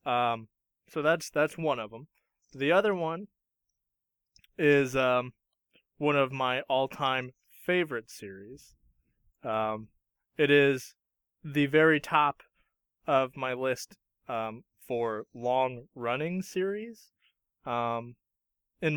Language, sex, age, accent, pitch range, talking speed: English, male, 20-39, American, 110-150 Hz, 110 wpm